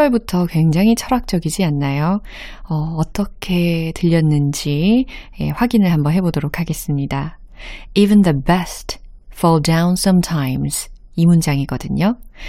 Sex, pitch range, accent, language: female, 155-215 Hz, native, Korean